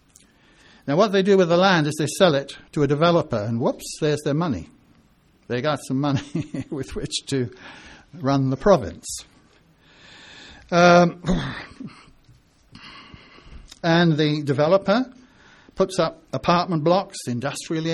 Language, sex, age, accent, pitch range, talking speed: English, male, 60-79, British, 145-185 Hz, 125 wpm